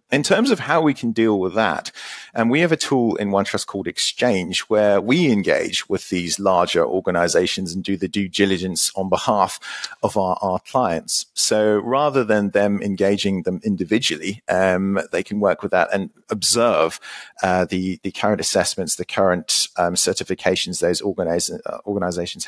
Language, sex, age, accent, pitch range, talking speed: English, male, 40-59, British, 95-120 Hz, 170 wpm